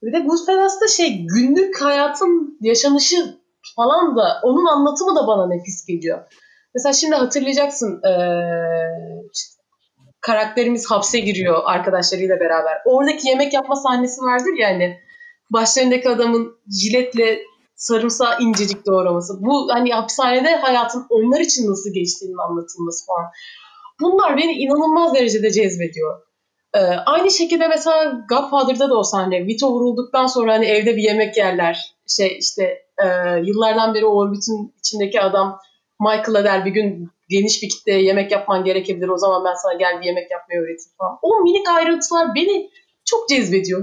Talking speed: 135 wpm